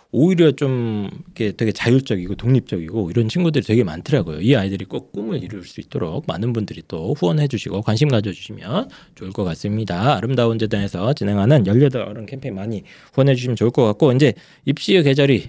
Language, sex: Korean, male